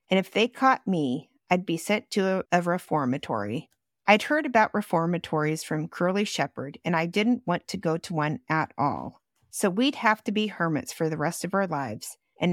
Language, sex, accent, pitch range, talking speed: English, female, American, 160-220 Hz, 200 wpm